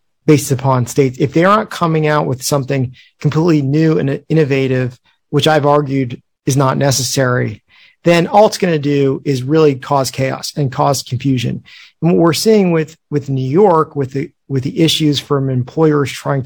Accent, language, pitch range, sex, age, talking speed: American, English, 135-165 Hz, male, 40-59, 180 wpm